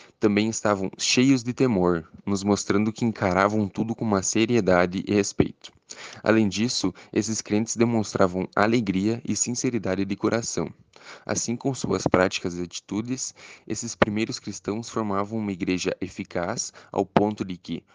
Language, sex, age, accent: Portuguese, male, 10-29, Brazilian